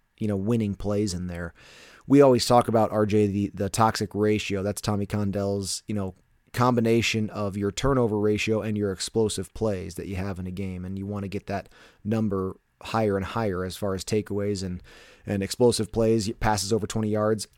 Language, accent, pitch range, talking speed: English, American, 100-115 Hz, 195 wpm